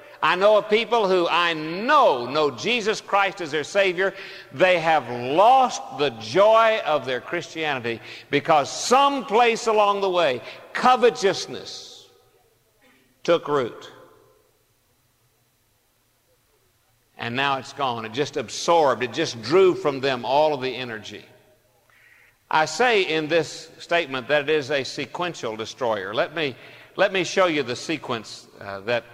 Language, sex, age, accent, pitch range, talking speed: English, male, 60-79, American, 125-190 Hz, 140 wpm